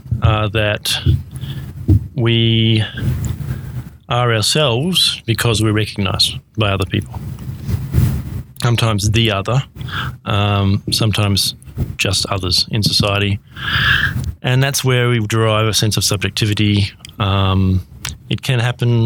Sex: male